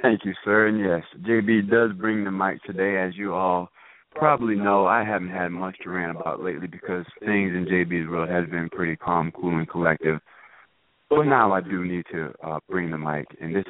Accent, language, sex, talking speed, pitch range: American, English, male, 210 wpm, 85-105 Hz